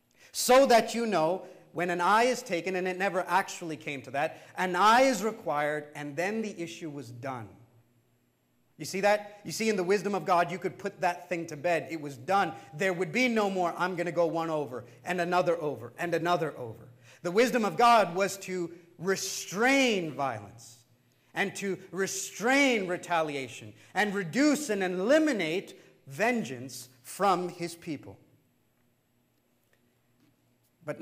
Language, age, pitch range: English, 40-59, 150-200 Hz